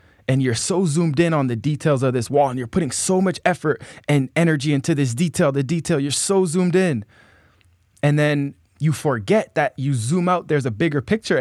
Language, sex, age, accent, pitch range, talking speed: English, male, 20-39, American, 115-150 Hz, 210 wpm